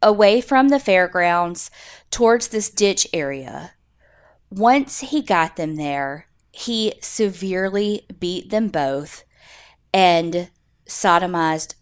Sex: female